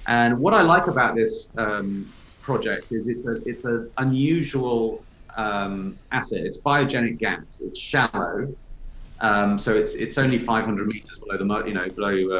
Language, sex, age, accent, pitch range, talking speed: English, male, 40-59, British, 105-125 Hz, 170 wpm